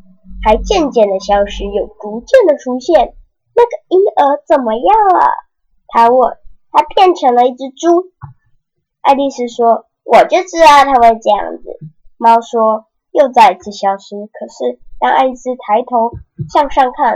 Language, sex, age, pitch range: Chinese, male, 10-29, 210-330 Hz